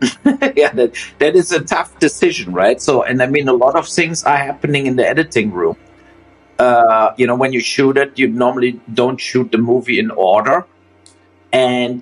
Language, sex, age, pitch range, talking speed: English, male, 50-69, 120-165 Hz, 190 wpm